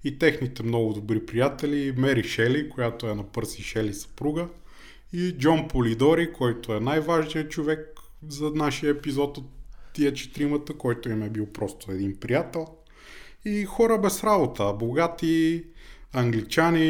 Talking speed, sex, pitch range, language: 140 wpm, male, 120-165 Hz, Bulgarian